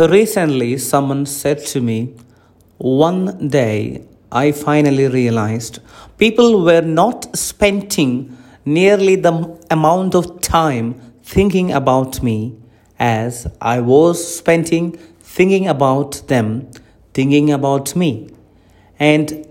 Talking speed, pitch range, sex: 100 wpm, 115-160 Hz, male